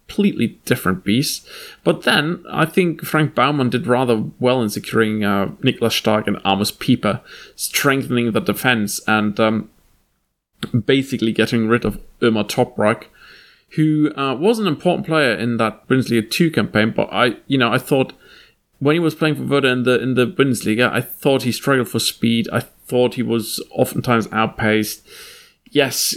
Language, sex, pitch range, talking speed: English, male, 110-135 Hz, 165 wpm